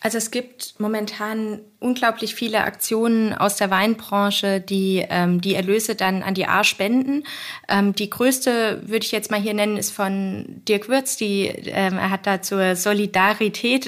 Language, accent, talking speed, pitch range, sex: German, German, 170 wpm, 195-220 Hz, female